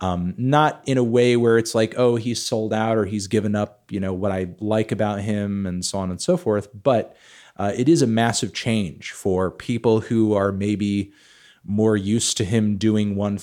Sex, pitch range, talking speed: male, 95-115 Hz, 210 wpm